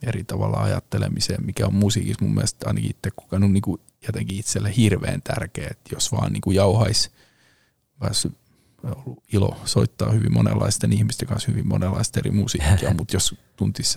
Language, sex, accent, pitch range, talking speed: Finnish, male, native, 100-120 Hz, 155 wpm